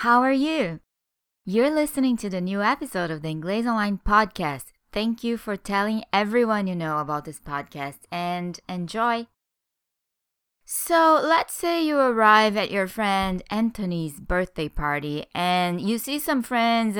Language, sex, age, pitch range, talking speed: English, female, 20-39, 180-235 Hz, 150 wpm